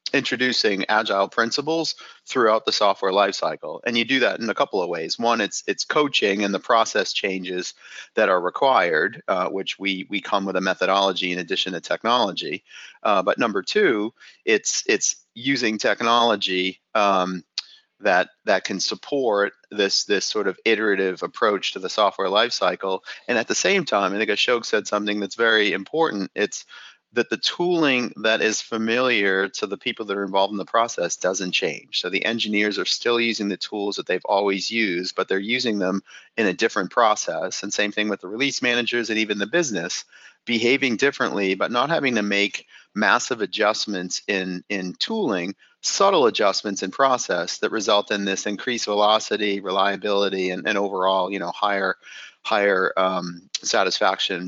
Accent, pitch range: American, 95-115 Hz